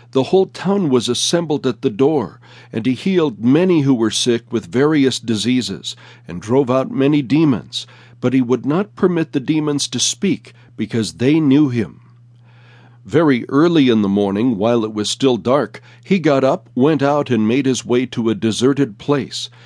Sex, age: male, 60-79